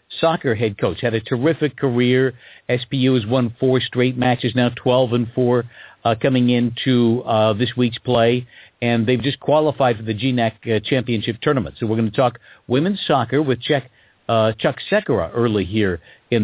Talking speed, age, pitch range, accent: 180 wpm, 50-69, 110-135 Hz, American